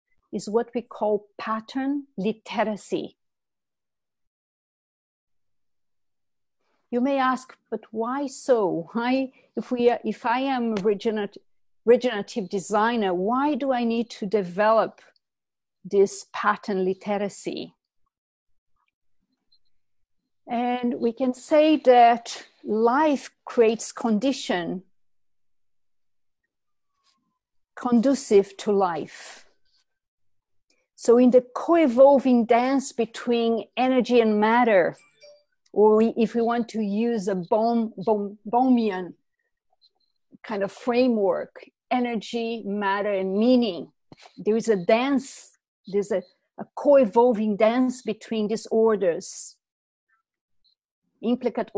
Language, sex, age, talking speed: English, female, 50-69, 90 wpm